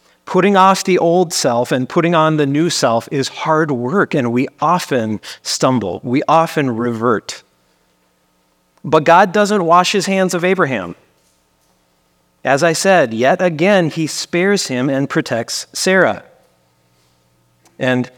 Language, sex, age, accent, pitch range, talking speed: English, male, 40-59, American, 115-160 Hz, 135 wpm